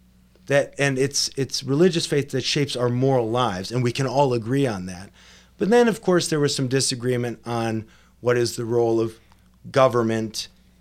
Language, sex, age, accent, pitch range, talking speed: English, male, 30-49, American, 95-140 Hz, 185 wpm